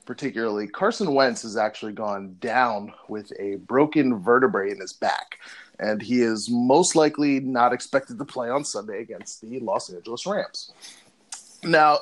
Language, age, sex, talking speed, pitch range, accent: English, 30-49, male, 155 wpm, 120-190 Hz, American